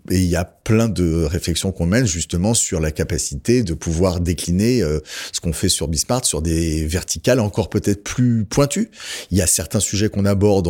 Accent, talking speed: French, 200 wpm